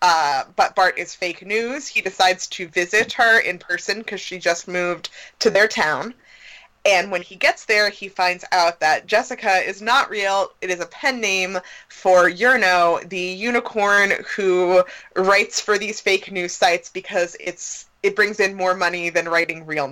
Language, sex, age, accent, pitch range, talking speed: English, female, 20-39, American, 180-220 Hz, 180 wpm